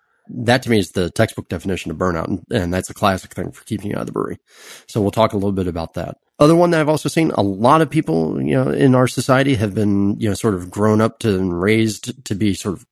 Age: 30-49